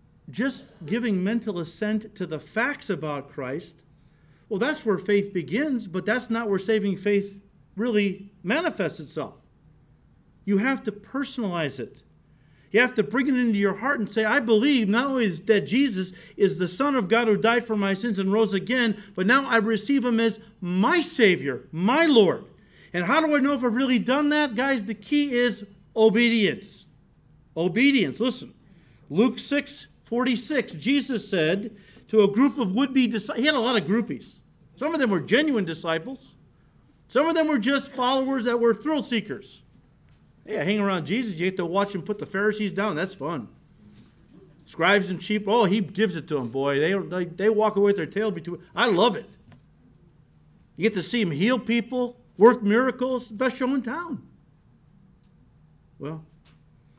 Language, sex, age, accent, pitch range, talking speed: English, male, 50-69, American, 185-250 Hz, 175 wpm